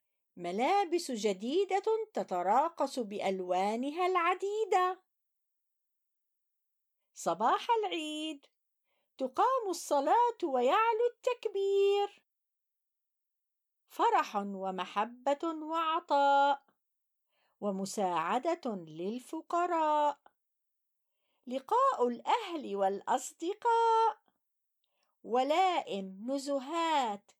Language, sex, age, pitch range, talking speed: Arabic, female, 50-69, 250-385 Hz, 45 wpm